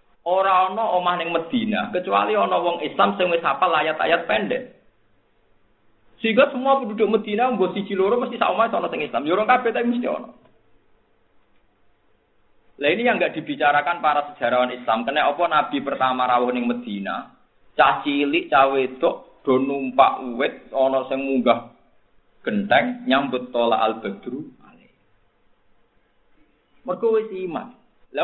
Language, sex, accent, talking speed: Indonesian, male, native, 135 wpm